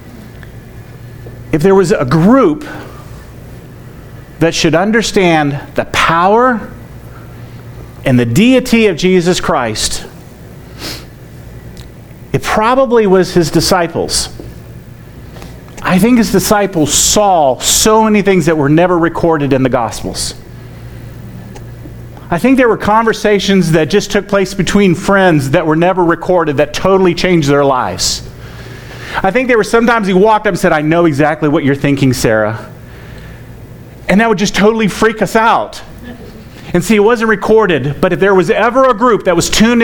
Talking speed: 145 wpm